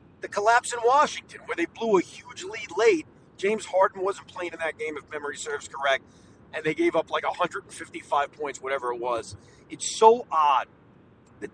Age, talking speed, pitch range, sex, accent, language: 30-49, 185 wpm, 155-240 Hz, male, American, English